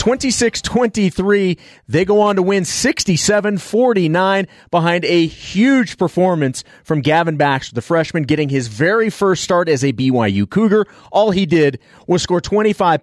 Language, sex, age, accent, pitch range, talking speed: English, male, 30-49, American, 145-185 Hz, 150 wpm